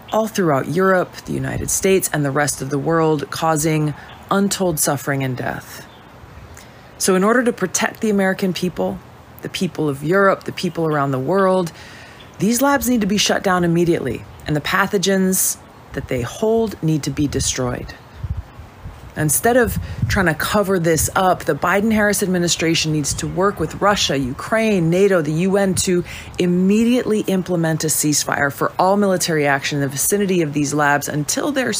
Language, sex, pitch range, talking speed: English, female, 140-190 Hz, 165 wpm